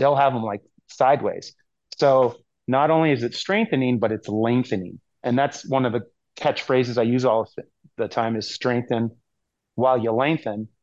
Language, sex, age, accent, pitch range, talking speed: English, male, 30-49, American, 110-135 Hz, 170 wpm